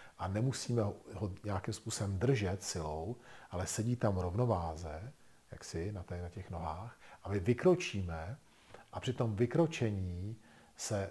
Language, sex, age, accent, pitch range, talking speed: Czech, male, 40-59, native, 95-120 Hz, 125 wpm